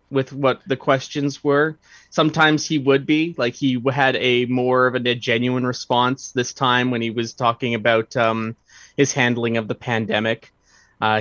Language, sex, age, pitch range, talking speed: English, male, 20-39, 115-145 Hz, 170 wpm